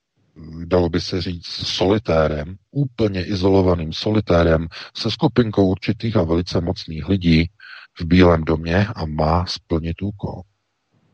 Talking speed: 120 wpm